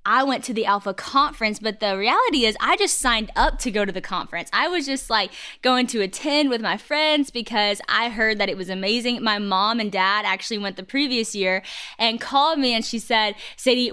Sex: female